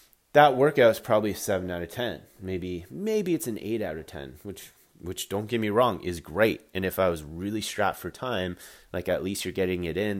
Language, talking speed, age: English, 235 wpm, 30-49